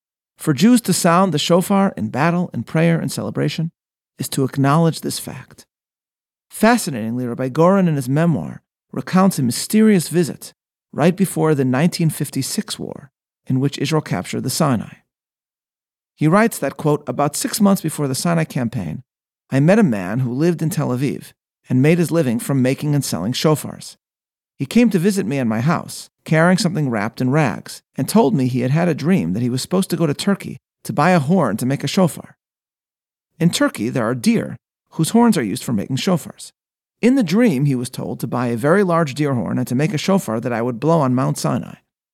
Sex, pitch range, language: male, 135-190 Hz, English